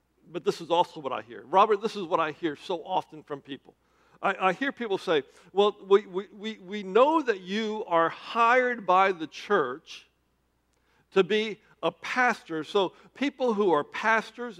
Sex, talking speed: male, 175 wpm